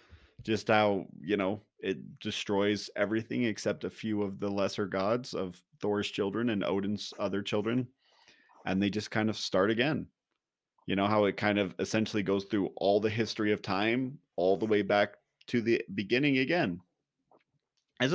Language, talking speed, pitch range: English, 170 wpm, 95-110 Hz